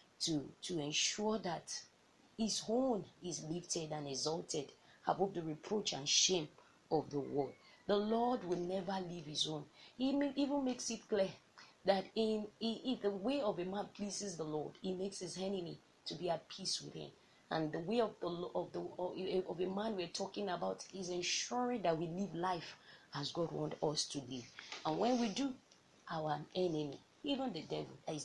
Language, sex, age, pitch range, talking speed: English, female, 30-49, 150-205 Hz, 185 wpm